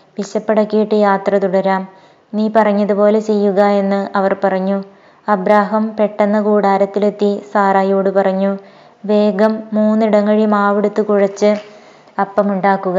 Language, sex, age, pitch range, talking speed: Malayalam, female, 20-39, 195-215 Hz, 90 wpm